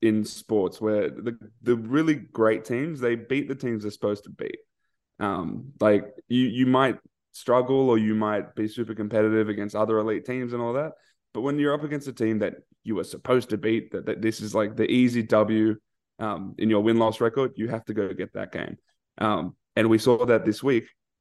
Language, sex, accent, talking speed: English, male, Australian, 215 wpm